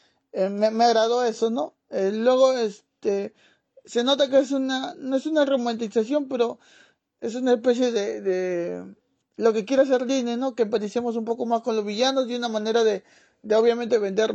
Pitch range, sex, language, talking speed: 190-235 Hz, male, Spanish, 190 wpm